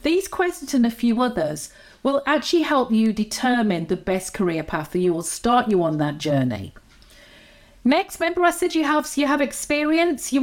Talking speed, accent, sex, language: 195 wpm, British, female, English